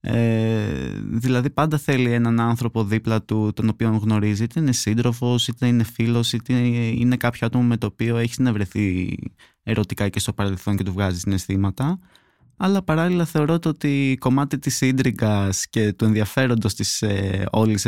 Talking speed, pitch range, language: 165 wpm, 110-145 Hz, Greek